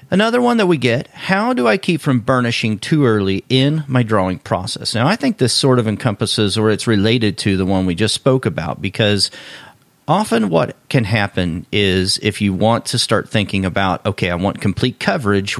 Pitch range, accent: 105-140 Hz, American